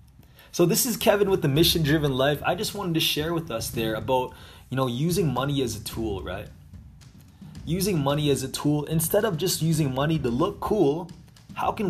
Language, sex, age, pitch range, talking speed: English, male, 20-39, 100-150 Hz, 205 wpm